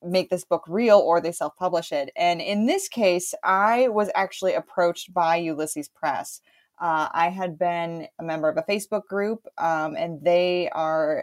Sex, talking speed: female, 175 wpm